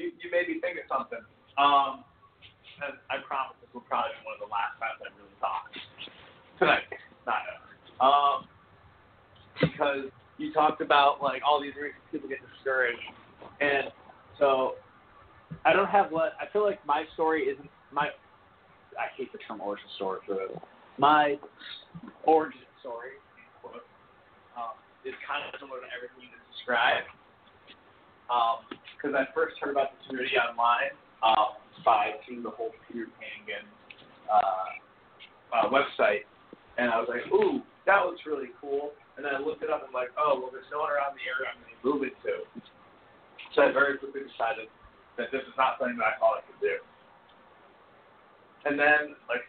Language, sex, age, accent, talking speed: English, male, 30-49, American, 170 wpm